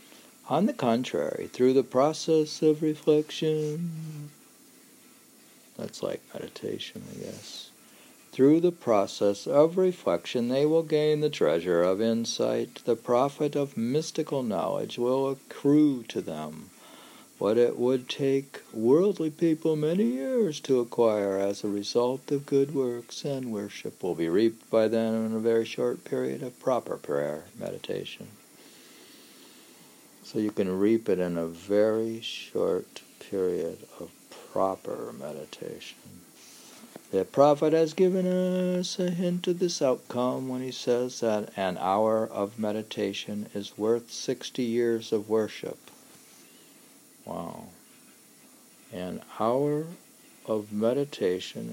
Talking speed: 125 wpm